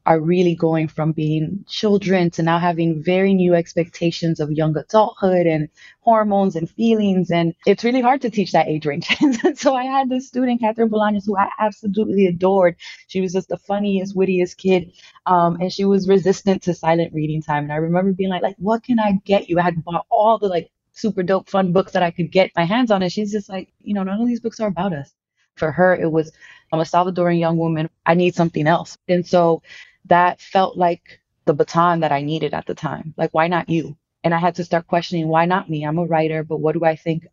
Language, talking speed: English, 230 wpm